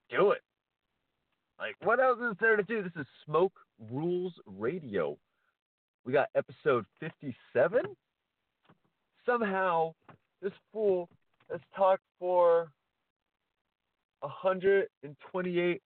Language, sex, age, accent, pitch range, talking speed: English, male, 40-59, American, 120-175 Hz, 95 wpm